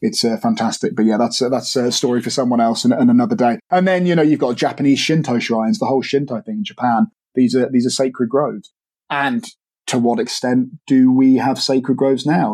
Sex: male